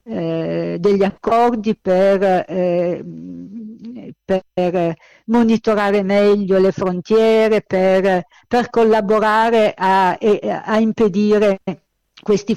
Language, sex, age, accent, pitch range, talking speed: Italian, female, 50-69, native, 185-225 Hz, 70 wpm